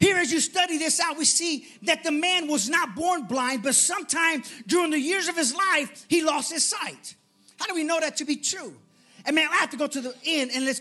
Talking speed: 260 wpm